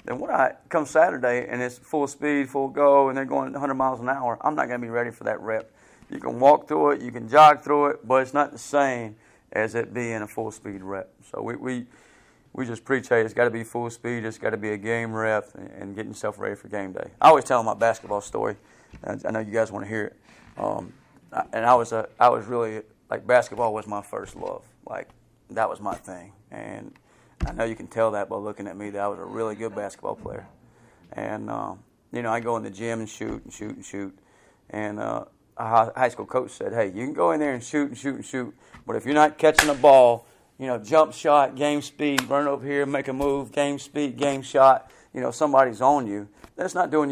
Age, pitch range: 30-49, 110-140 Hz